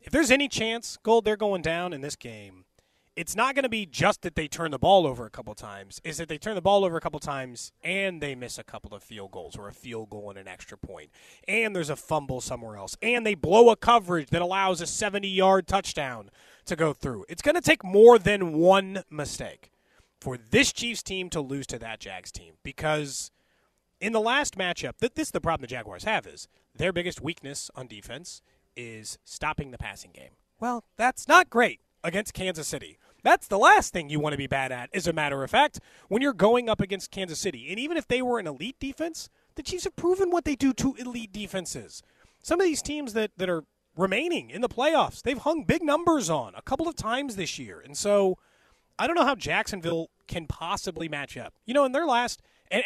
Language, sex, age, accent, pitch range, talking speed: English, male, 30-49, American, 145-235 Hz, 225 wpm